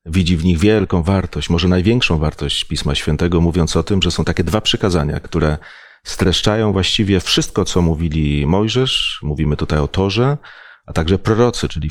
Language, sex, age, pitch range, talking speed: Polish, male, 40-59, 80-100 Hz, 165 wpm